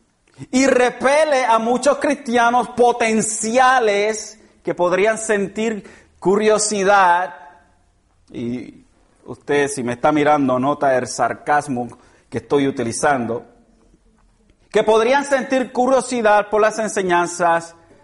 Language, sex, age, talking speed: Spanish, male, 40-59, 95 wpm